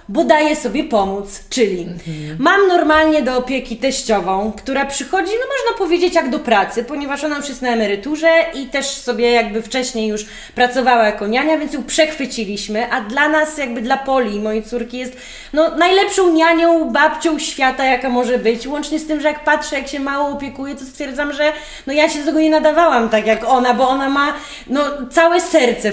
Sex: female